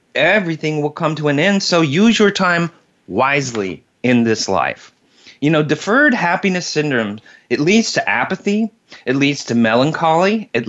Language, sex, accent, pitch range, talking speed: English, male, American, 120-185 Hz, 155 wpm